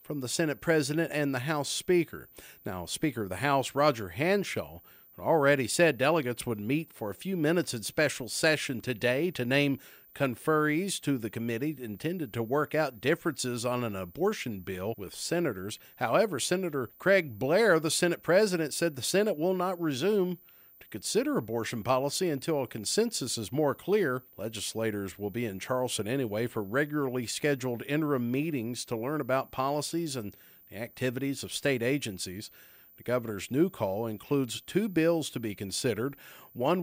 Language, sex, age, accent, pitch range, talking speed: English, male, 50-69, American, 125-165 Hz, 165 wpm